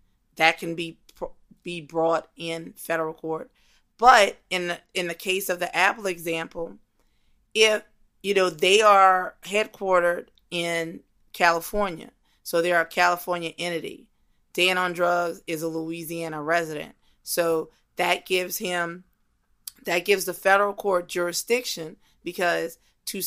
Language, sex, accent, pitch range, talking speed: English, female, American, 165-190 Hz, 130 wpm